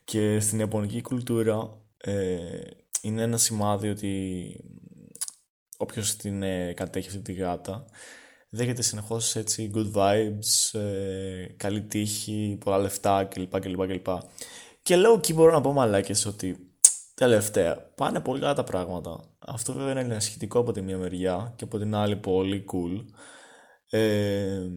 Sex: male